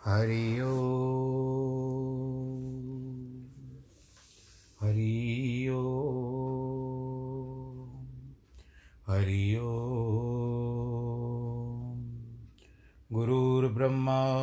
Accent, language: native, Hindi